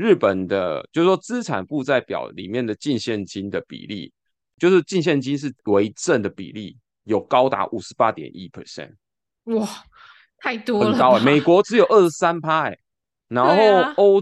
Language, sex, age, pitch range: Chinese, male, 20-39, 110-170 Hz